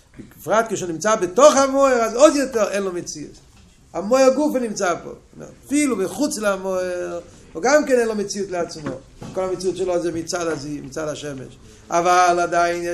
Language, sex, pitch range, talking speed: Hebrew, male, 150-215 Hz, 150 wpm